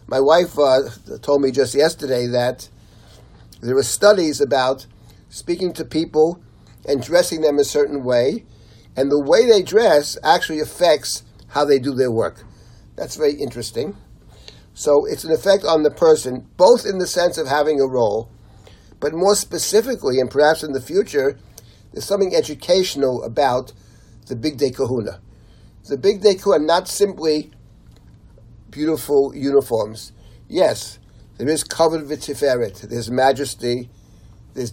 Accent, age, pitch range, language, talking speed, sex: American, 60-79, 120-155 Hz, English, 140 wpm, male